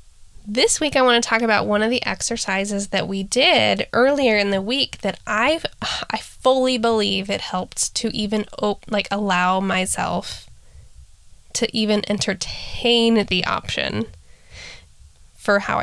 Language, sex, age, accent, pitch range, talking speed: English, female, 10-29, American, 180-235 Hz, 135 wpm